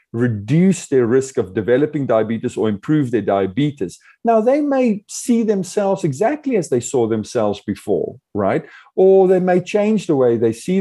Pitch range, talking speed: 115-185 Hz, 165 wpm